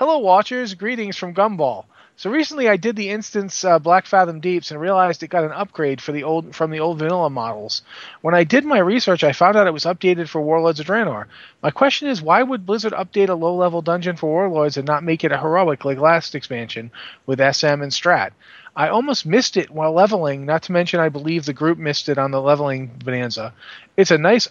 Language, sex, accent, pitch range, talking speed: English, male, American, 145-185 Hz, 215 wpm